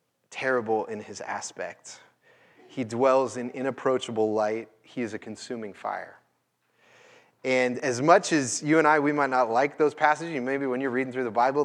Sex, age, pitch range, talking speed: male, 30-49, 125-160 Hz, 175 wpm